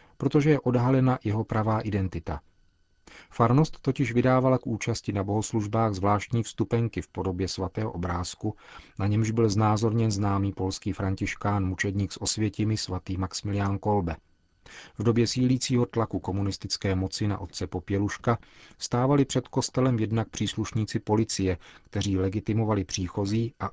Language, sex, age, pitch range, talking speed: Czech, male, 40-59, 95-115 Hz, 130 wpm